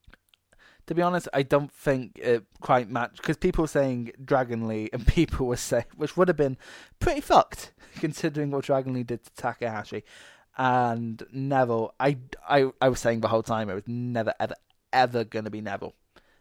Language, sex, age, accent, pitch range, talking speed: English, male, 20-39, British, 110-140 Hz, 185 wpm